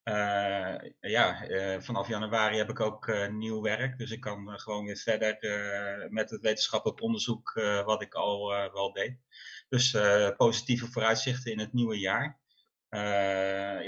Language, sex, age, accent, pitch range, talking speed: Dutch, male, 30-49, Dutch, 105-125 Hz, 170 wpm